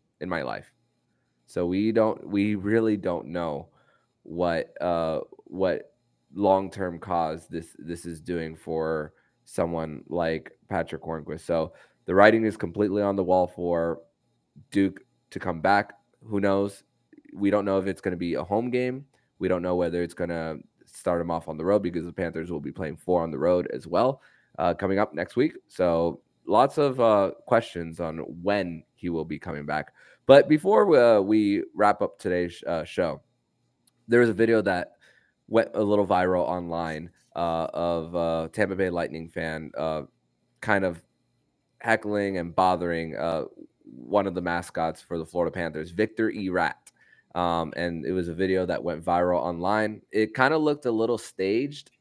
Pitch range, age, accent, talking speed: 85-105 Hz, 20-39, American, 180 wpm